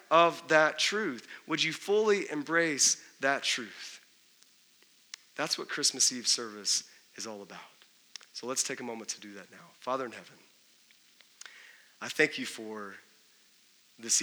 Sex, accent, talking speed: male, American, 145 wpm